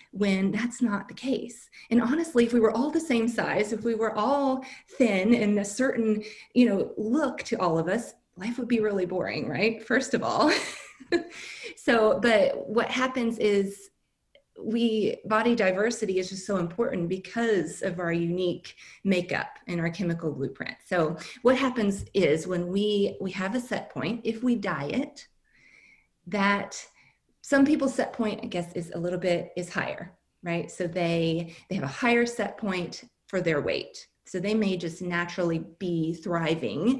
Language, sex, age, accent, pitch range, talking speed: English, female, 30-49, American, 175-235 Hz, 170 wpm